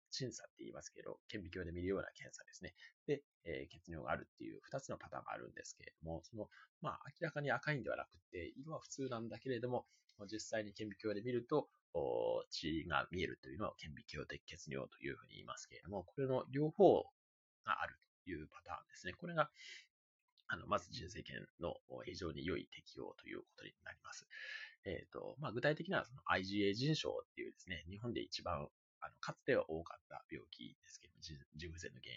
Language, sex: Japanese, male